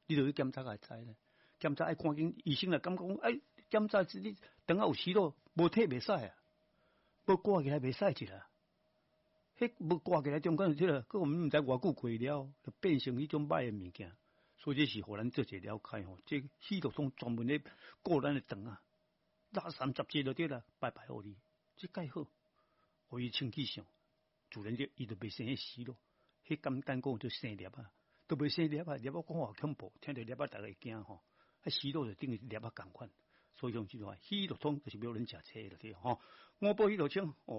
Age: 60-79